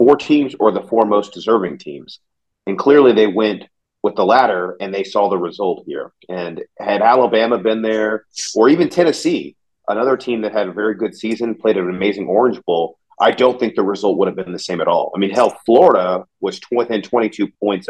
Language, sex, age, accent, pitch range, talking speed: English, male, 40-59, American, 105-140 Hz, 210 wpm